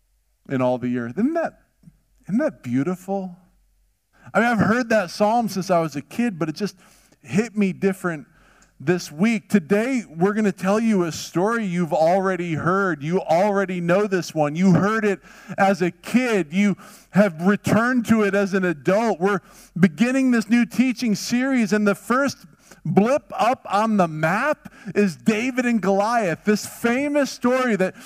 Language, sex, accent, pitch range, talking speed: English, male, American, 190-235 Hz, 170 wpm